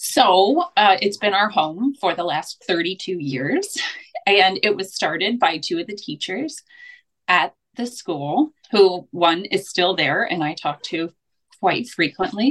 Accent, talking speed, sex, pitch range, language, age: American, 165 wpm, female, 180-240 Hz, English, 30-49